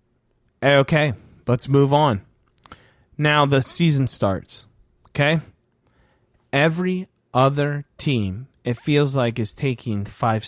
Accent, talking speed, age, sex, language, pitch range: American, 105 wpm, 30-49, male, English, 115-165 Hz